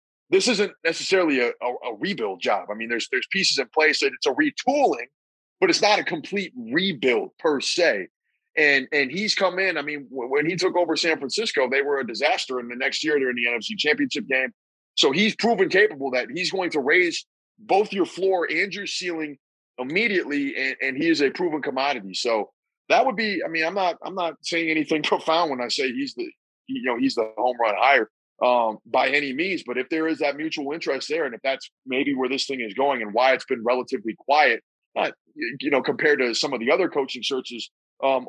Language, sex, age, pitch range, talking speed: English, male, 30-49, 125-190 Hz, 220 wpm